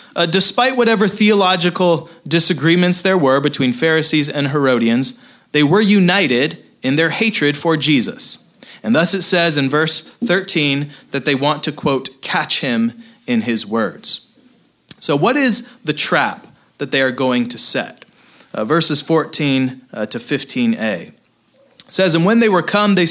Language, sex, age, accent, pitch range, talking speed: English, male, 30-49, American, 145-195 Hz, 160 wpm